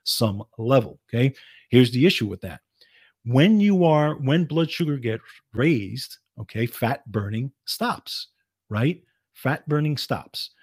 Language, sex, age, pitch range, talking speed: English, male, 40-59, 110-140 Hz, 135 wpm